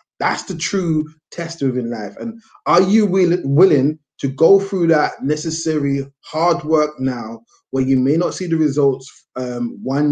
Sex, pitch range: male, 135-170 Hz